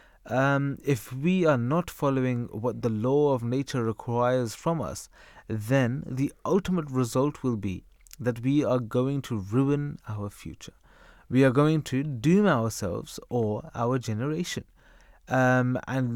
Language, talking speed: English, 145 wpm